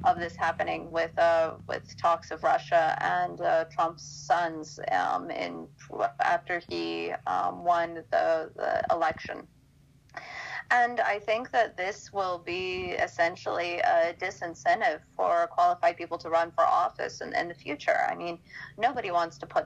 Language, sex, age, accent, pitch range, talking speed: English, female, 30-49, American, 160-215 Hz, 150 wpm